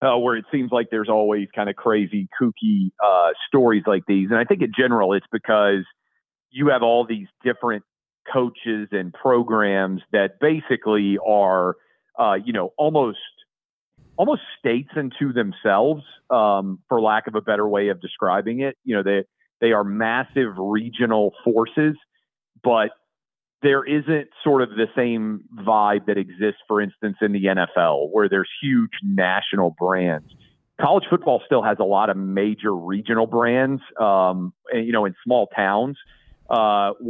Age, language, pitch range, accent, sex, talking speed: 40-59, English, 100-120 Hz, American, male, 160 wpm